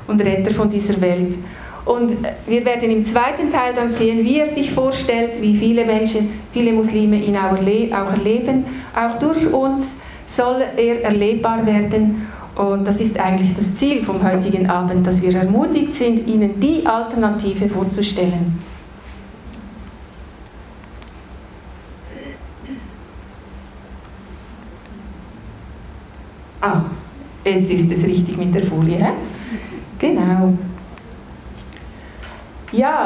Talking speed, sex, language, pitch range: 105 wpm, female, German, 195-255 Hz